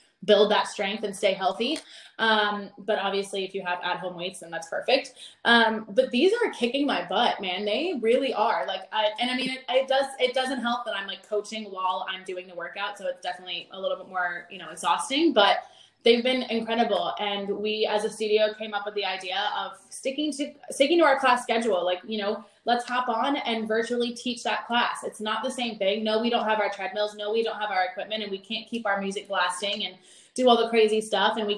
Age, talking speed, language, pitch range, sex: 20-39, 235 wpm, English, 195-235 Hz, female